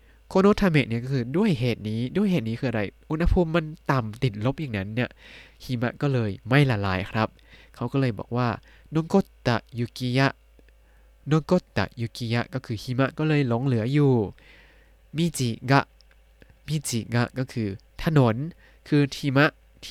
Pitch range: 110-145 Hz